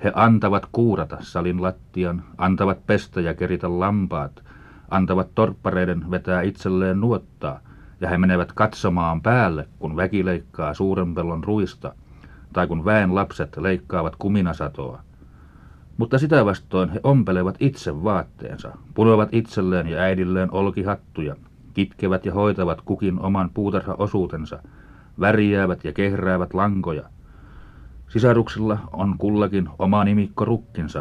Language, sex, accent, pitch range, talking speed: Finnish, male, native, 90-105 Hz, 110 wpm